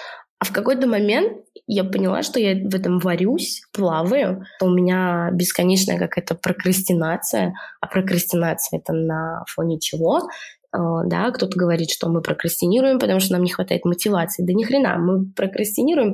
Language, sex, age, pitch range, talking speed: Russian, female, 20-39, 180-220 Hz, 150 wpm